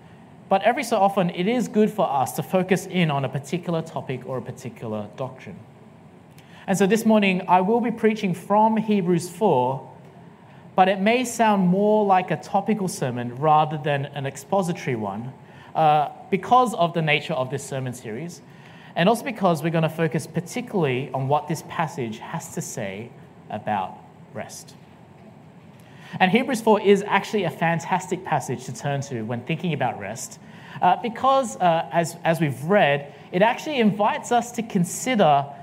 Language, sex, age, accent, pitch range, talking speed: English, male, 30-49, Australian, 145-195 Hz, 165 wpm